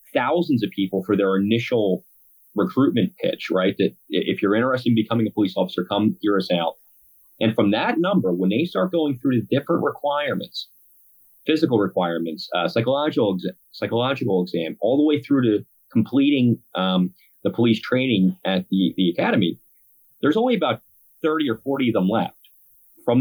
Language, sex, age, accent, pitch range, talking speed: English, male, 30-49, American, 100-140 Hz, 170 wpm